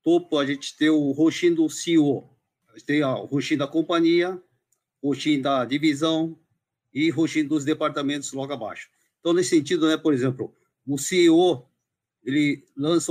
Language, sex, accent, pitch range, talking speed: Portuguese, male, Brazilian, 135-160 Hz, 155 wpm